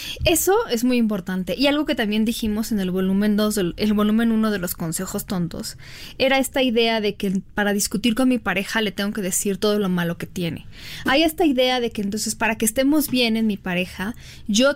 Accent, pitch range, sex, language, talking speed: Mexican, 210-270 Hz, female, Spanish, 215 wpm